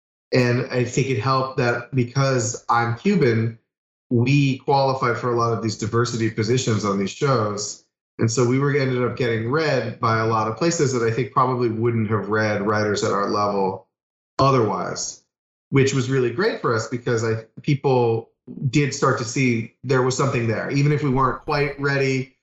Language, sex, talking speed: English, male, 185 wpm